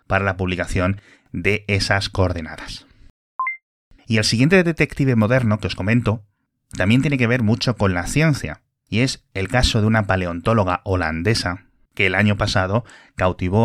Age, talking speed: 30-49, 155 wpm